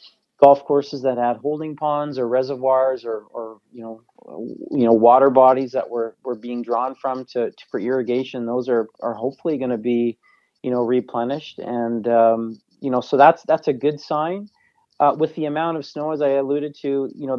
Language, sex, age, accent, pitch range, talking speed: English, male, 30-49, American, 115-135 Hz, 200 wpm